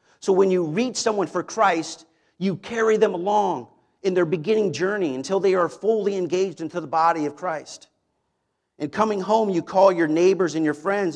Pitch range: 150-190 Hz